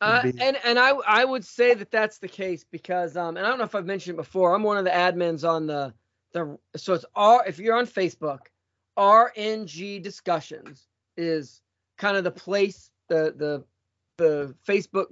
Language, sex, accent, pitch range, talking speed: English, male, American, 155-195 Hz, 190 wpm